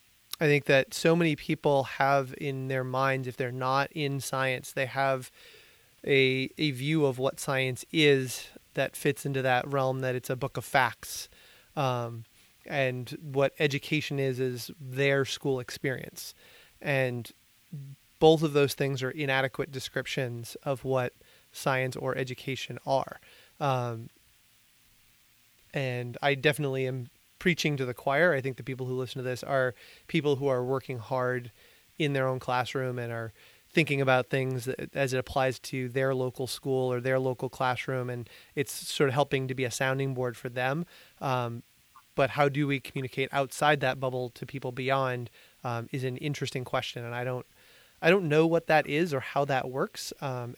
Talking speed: 170 wpm